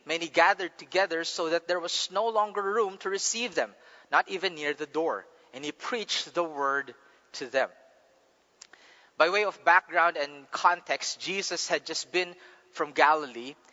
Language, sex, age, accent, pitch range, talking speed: English, male, 30-49, Filipino, 160-210 Hz, 160 wpm